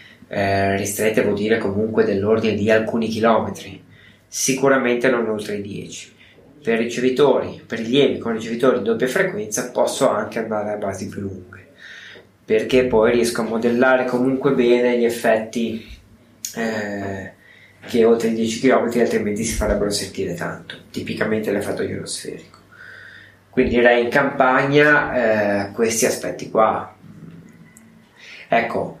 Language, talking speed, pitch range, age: Italian, 130 wpm, 105-125 Hz, 20-39